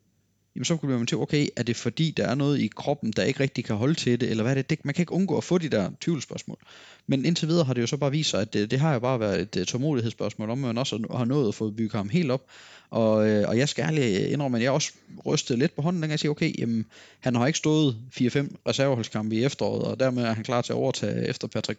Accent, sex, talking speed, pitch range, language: native, male, 275 wpm, 110-145 Hz, Danish